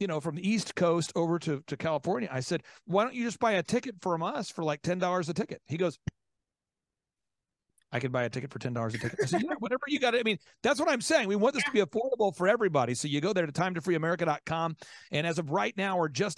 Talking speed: 265 wpm